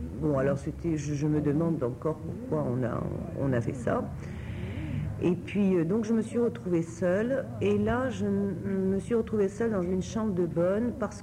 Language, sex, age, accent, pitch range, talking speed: English, female, 60-79, French, 150-190 Hz, 185 wpm